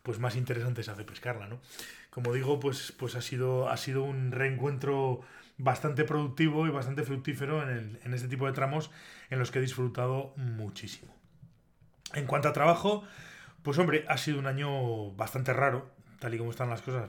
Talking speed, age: 185 wpm, 20-39